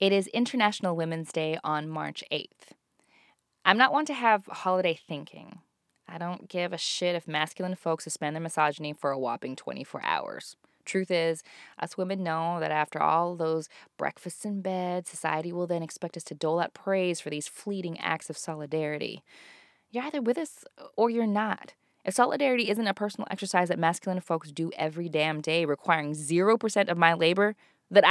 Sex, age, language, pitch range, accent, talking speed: female, 20-39, English, 165-210 Hz, American, 180 wpm